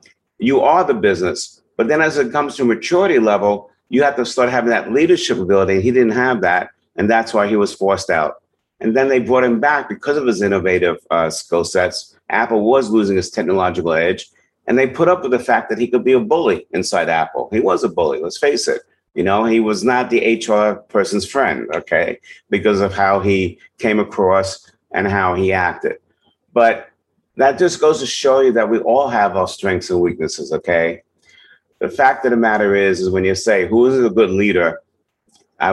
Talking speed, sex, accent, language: 210 wpm, male, American, English